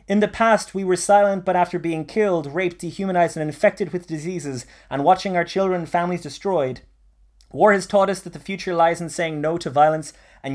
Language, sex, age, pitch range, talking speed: English, male, 20-39, 125-170 Hz, 210 wpm